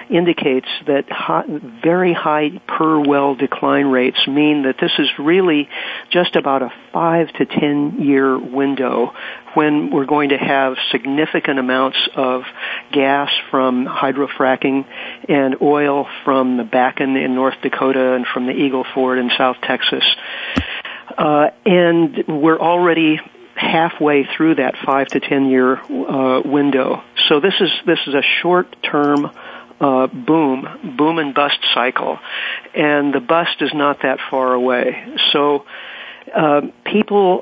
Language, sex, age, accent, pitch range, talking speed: English, male, 50-69, American, 130-155 Hz, 140 wpm